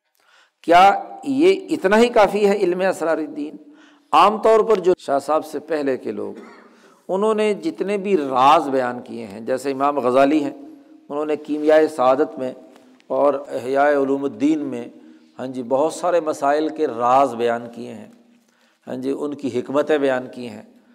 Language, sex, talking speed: Urdu, male, 170 wpm